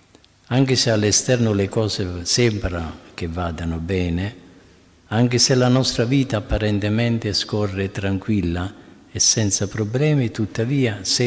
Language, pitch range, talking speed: Italian, 90-120 Hz, 115 wpm